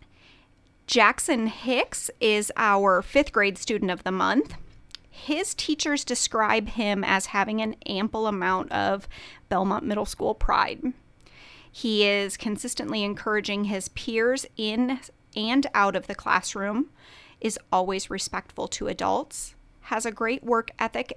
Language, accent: English, American